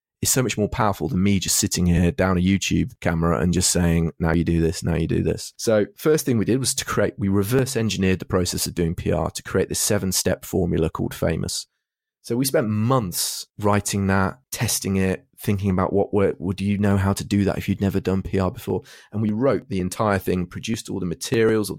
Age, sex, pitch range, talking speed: 30-49, male, 90-105 Hz, 235 wpm